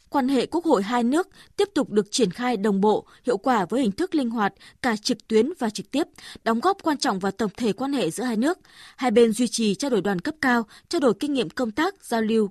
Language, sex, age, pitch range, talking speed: Vietnamese, female, 20-39, 215-290 Hz, 265 wpm